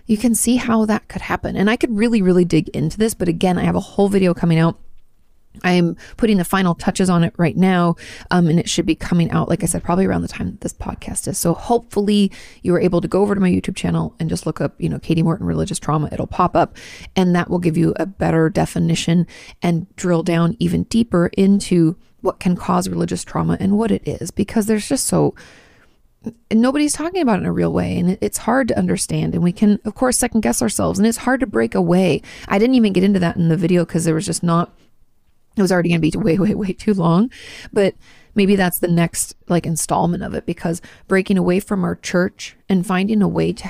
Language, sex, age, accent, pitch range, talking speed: English, female, 30-49, American, 170-210 Hz, 240 wpm